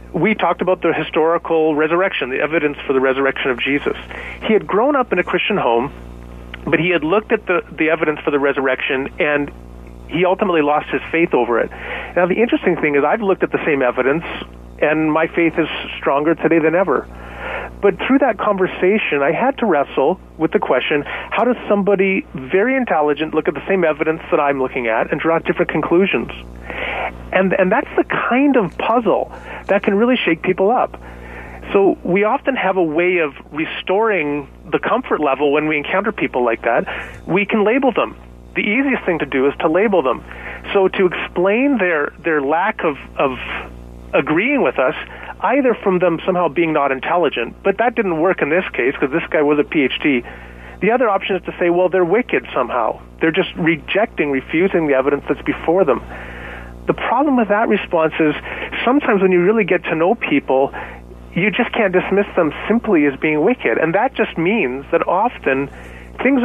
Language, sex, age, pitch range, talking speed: English, male, 40-59, 135-195 Hz, 190 wpm